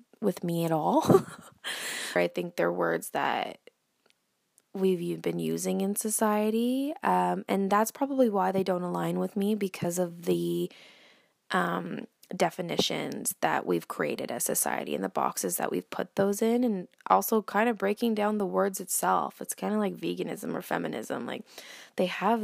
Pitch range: 175-225 Hz